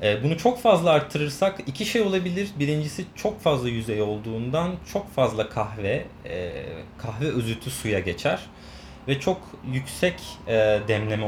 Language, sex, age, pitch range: Turkish, male, 30-49, 110-155 Hz